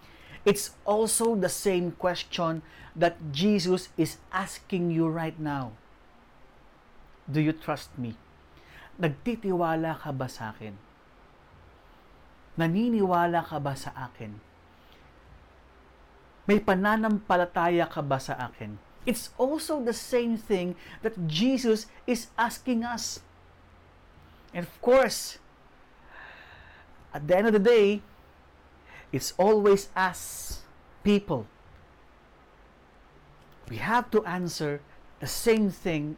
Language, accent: English, Filipino